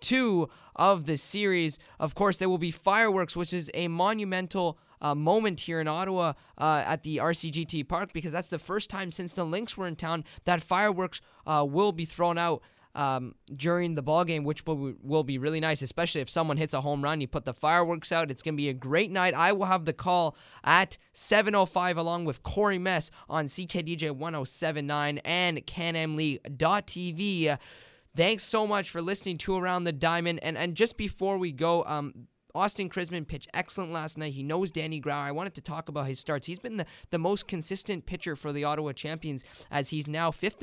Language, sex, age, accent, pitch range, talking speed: English, male, 20-39, American, 150-180 Hz, 200 wpm